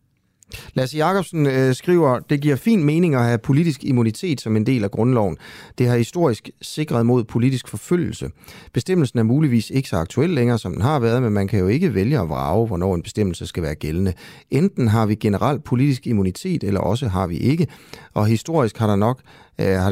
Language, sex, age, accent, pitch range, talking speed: Danish, male, 30-49, native, 95-135 Hz, 200 wpm